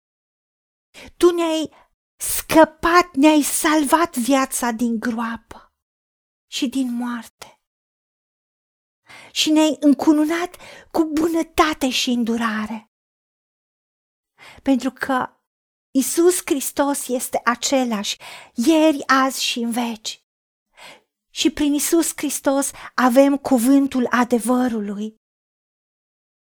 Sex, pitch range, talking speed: female, 240-310 Hz, 80 wpm